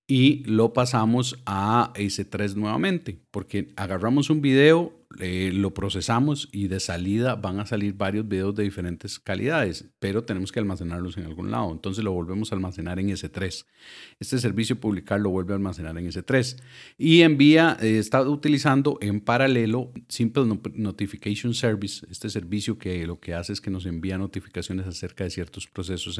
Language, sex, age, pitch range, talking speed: Spanish, male, 40-59, 95-125 Hz, 165 wpm